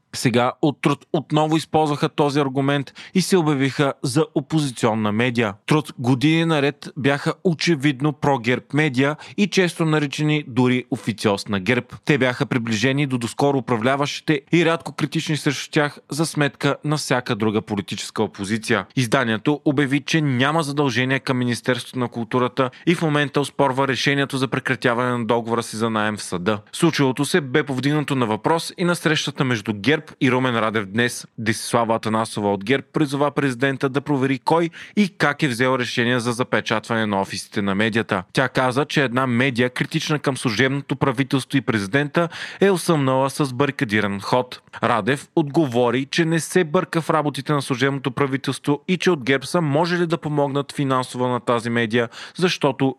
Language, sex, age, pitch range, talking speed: Bulgarian, male, 30-49, 120-150 Hz, 165 wpm